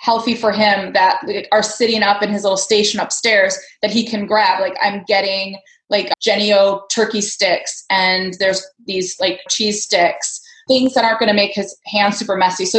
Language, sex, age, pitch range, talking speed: English, female, 20-39, 190-225 Hz, 190 wpm